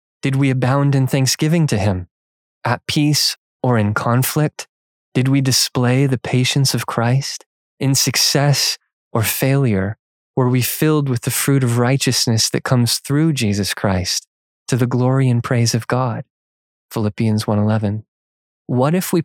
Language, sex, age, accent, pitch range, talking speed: English, male, 20-39, American, 105-130 Hz, 150 wpm